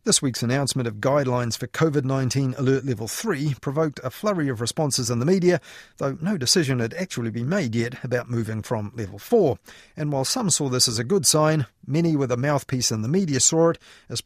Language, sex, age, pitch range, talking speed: English, male, 40-59, 120-155 Hz, 210 wpm